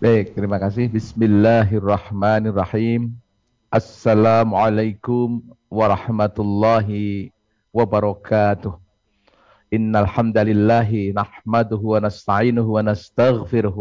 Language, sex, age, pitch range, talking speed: Indonesian, male, 50-69, 100-115 Hz, 60 wpm